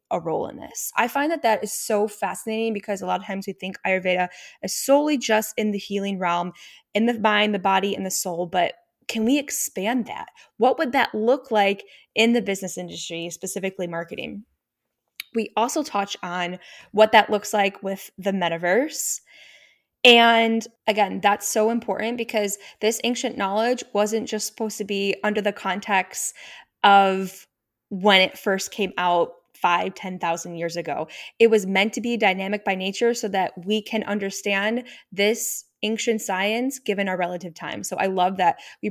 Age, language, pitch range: 10-29, English, 195-230 Hz